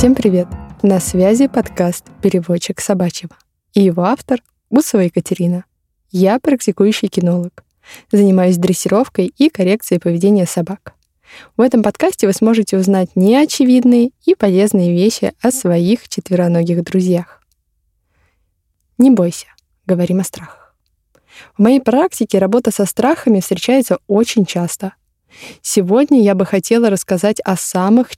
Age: 20-39